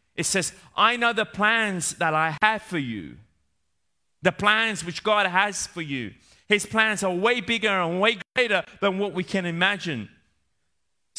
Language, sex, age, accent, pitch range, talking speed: Italian, male, 30-49, British, 135-205 Hz, 170 wpm